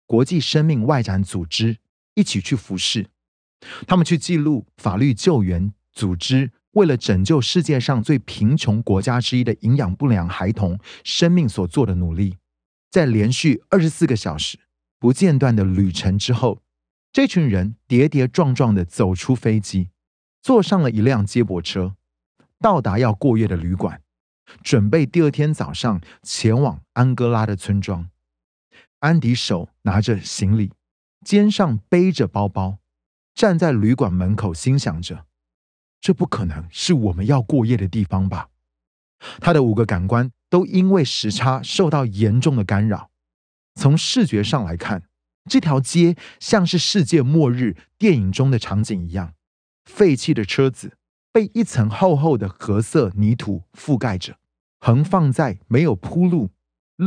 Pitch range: 95-150 Hz